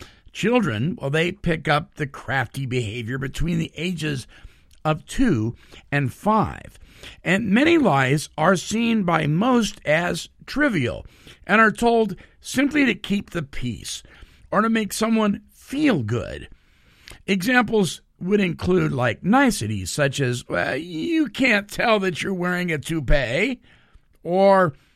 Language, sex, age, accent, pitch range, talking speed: English, male, 50-69, American, 125-210 Hz, 130 wpm